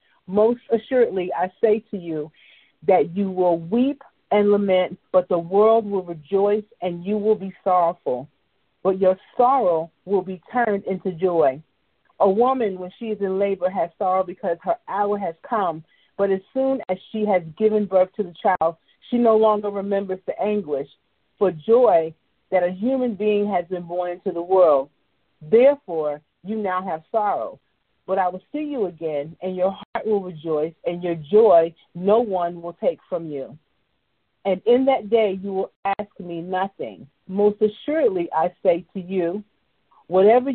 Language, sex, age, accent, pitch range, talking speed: English, female, 40-59, American, 170-210 Hz, 170 wpm